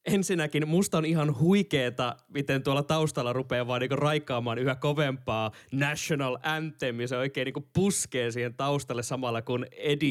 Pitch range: 125-155 Hz